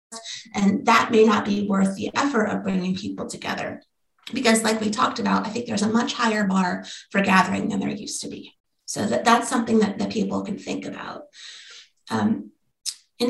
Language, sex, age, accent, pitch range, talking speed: English, female, 30-49, American, 195-240 Hz, 185 wpm